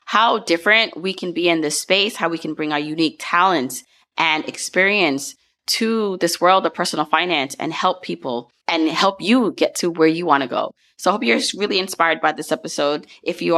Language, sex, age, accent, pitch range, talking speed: English, female, 20-39, American, 150-185 Hz, 205 wpm